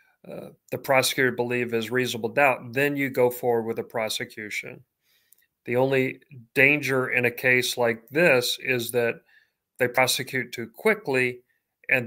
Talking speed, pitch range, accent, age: 145 wpm, 120-140 Hz, American, 40-59